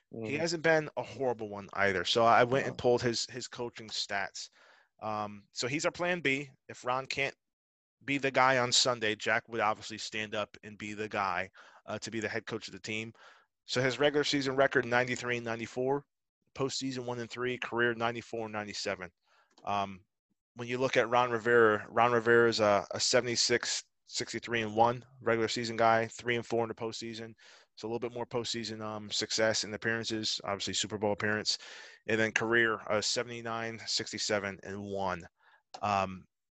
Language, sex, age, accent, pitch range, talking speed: English, male, 20-39, American, 105-125 Hz, 190 wpm